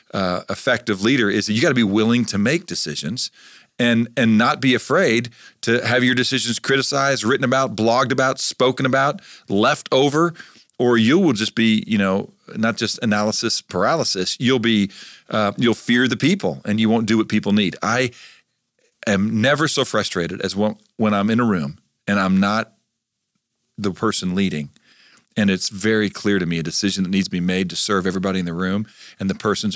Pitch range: 95-115 Hz